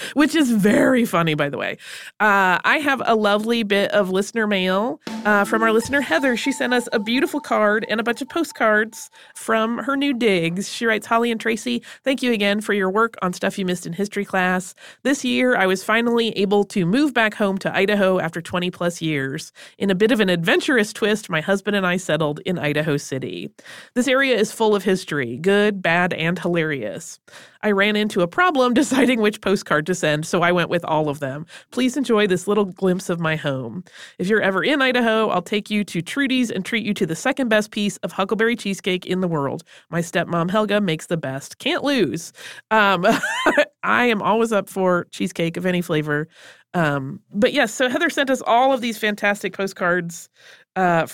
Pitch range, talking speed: 180-235 Hz, 205 wpm